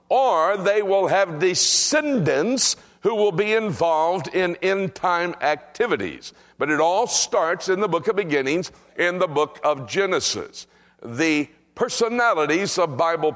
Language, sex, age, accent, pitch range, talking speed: English, male, 60-79, American, 165-230 Hz, 135 wpm